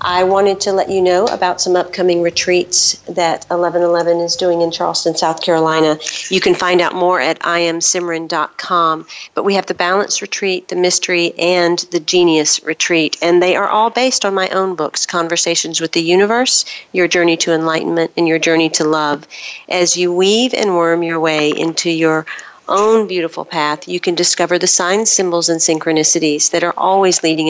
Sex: female